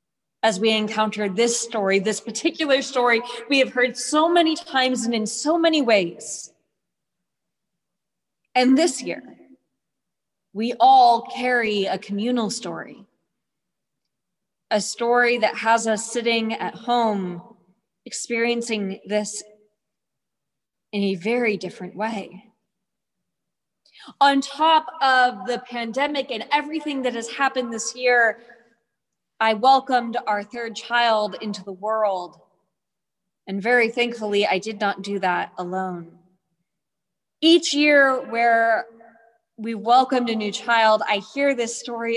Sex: female